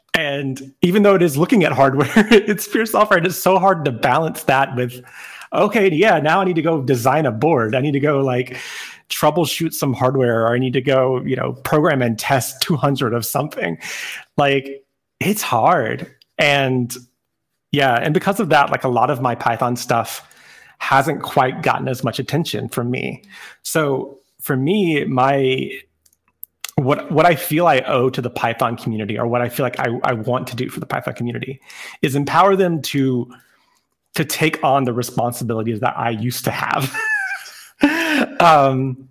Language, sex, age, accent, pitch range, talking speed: English, male, 30-49, American, 125-160 Hz, 180 wpm